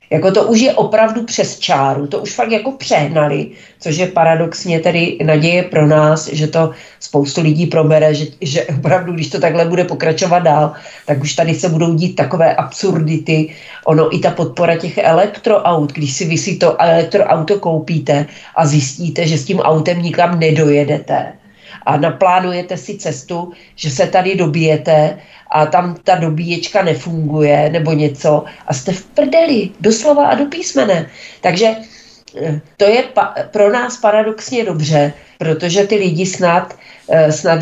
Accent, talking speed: native, 160 wpm